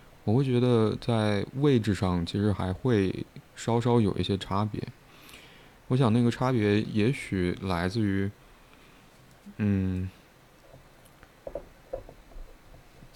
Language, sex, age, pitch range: Chinese, male, 20-39, 95-115 Hz